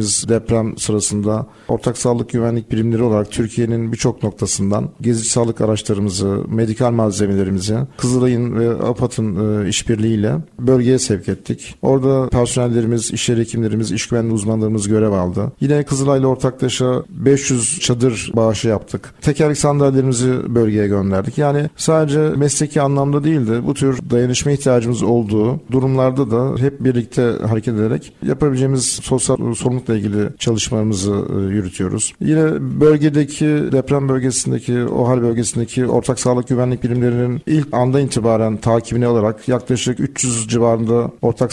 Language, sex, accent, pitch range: Turkish, male, native, 110-130 Hz